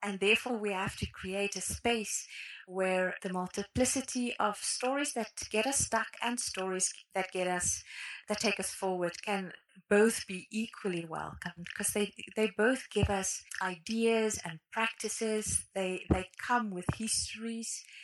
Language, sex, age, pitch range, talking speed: English, female, 30-49, 185-225 Hz, 150 wpm